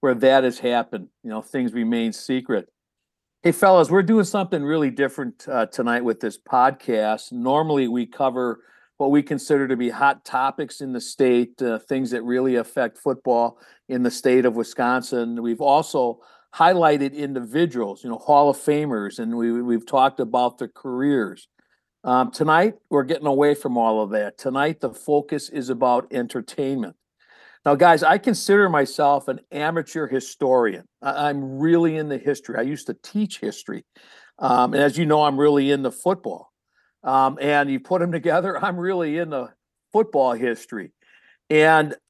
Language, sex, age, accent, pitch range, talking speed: English, male, 50-69, American, 125-155 Hz, 165 wpm